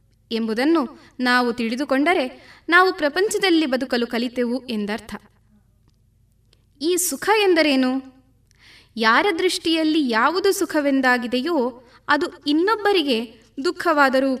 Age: 20-39